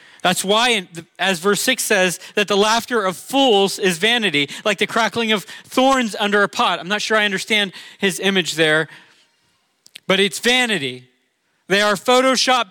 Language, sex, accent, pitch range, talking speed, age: English, male, American, 155-205 Hz, 165 wpm, 40-59